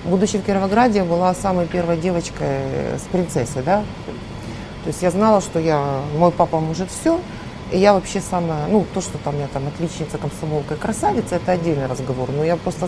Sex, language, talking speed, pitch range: female, Russian, 195 wpm, 150-190 Hz